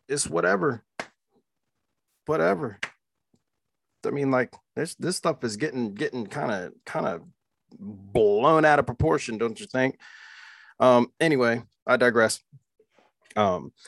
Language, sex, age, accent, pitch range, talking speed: English, male, 30-49, American, 115-155 Hz, 120 wpm